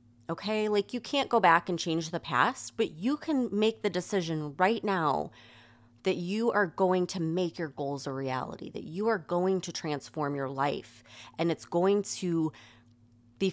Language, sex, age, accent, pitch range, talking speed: English, female, 30-49, American, 120-185 Hz, 180 wpm